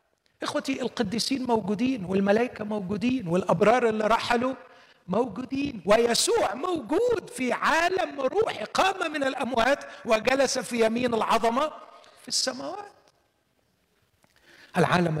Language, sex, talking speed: Arabic, male, 95 wpm